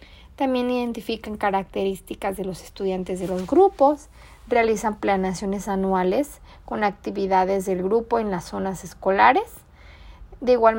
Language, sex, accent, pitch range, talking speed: Spanish, female, Mexican, 195-240 Hz, 120 wpm